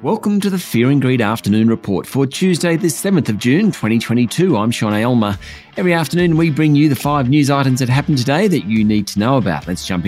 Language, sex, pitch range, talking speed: English, male, 110-155 Hz, 230 wpm